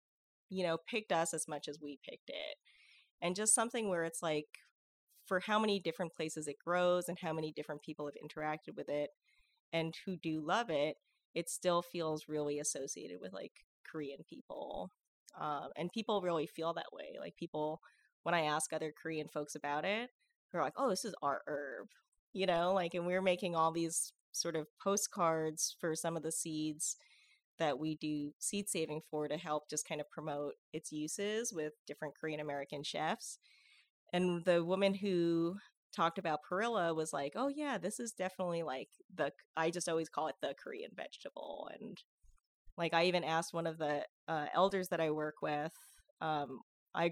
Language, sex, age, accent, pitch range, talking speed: English, female, 20-39, American, 155-185 Hz, 185 wpm